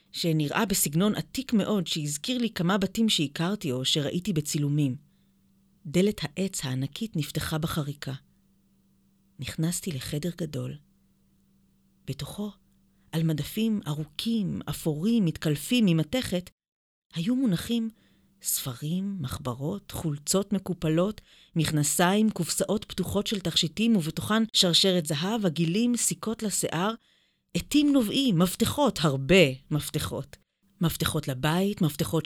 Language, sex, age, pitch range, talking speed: Hebrew, female, 30-49, 160-210 Hz, 100 wpm